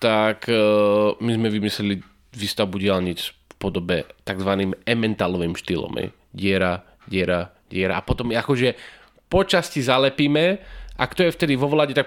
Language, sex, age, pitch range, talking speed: Slovak, male, 20-39, 95-125 Hz, 140 wpm